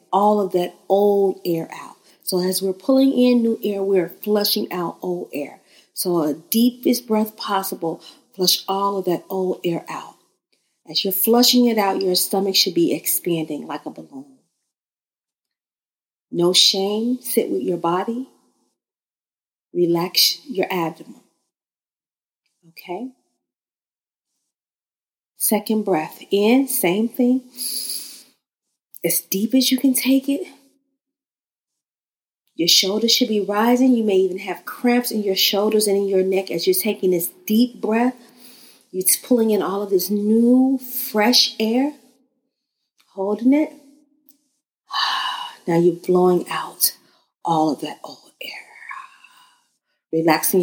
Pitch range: 180-250 Hz